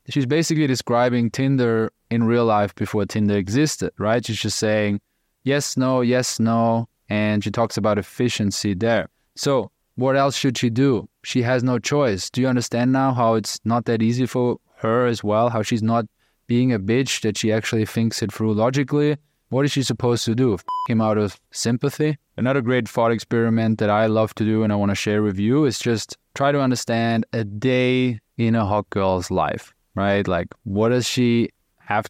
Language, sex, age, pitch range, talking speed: English, male, 20-39, 105-120 Hz, 195 wpm